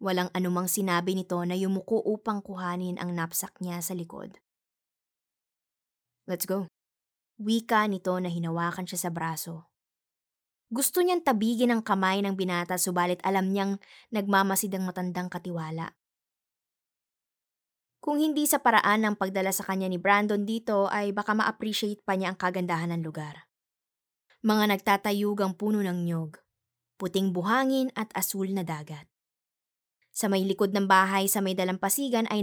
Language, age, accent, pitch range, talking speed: Filipino, 20-39, native, 175-210 Hz, 140 wpm